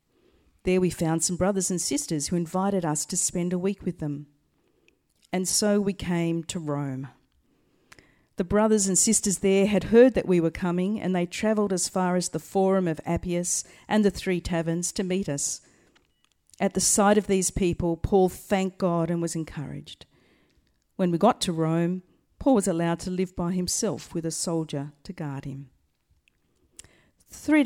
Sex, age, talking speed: female, 50-69, 175 wpm